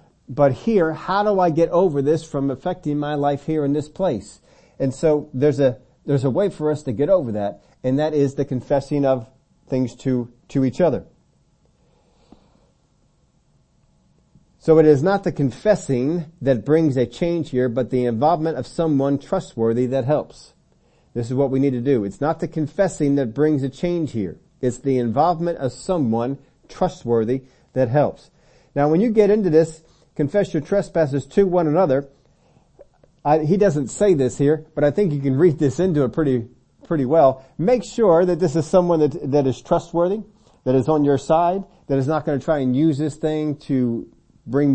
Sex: male